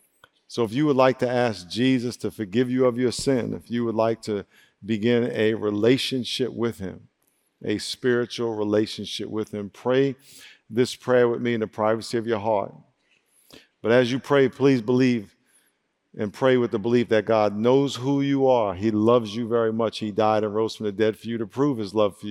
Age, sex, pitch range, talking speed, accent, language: 50-69, male, 110-130 Hz, 205 wpm, American, English